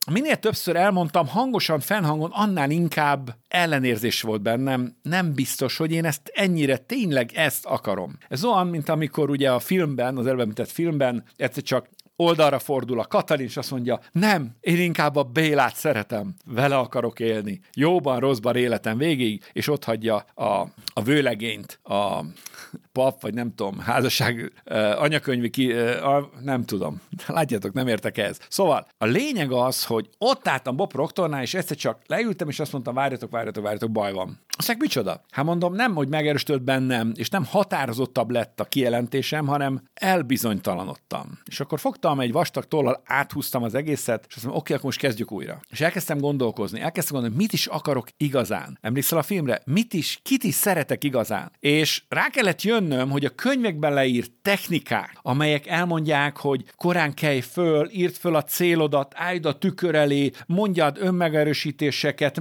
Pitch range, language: 130-170 Hz, Hungarian